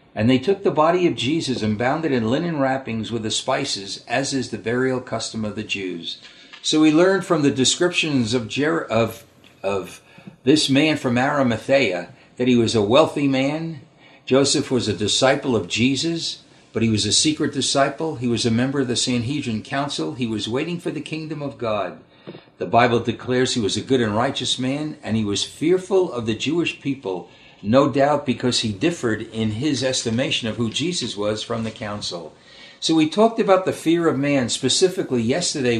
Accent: American